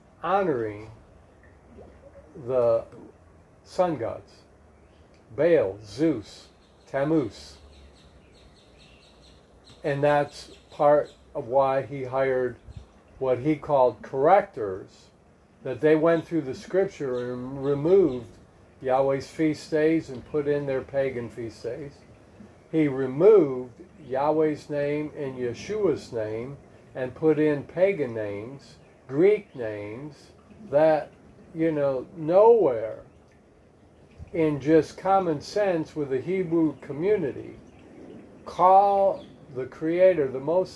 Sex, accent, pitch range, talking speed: male, American, 115-160 Hz, 100 wpm